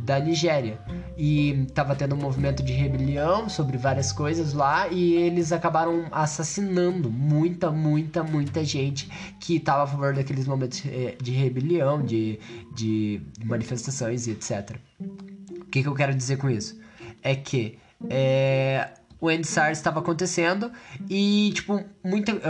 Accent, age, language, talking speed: Brazilian, 10-29, Portuguese, 140 wpm